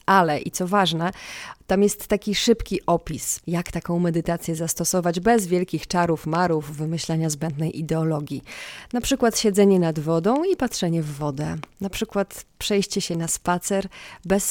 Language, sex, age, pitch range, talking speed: Polish, female, 30-49, 165-205 Hz, 150 wpm